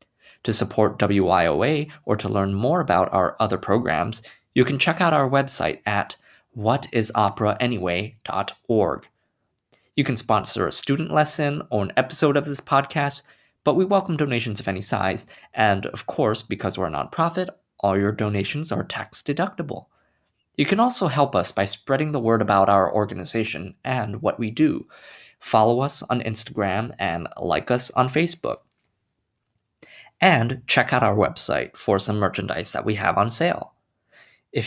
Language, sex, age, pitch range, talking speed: English, male, 20-39, 105-145 Hz, 155 wpm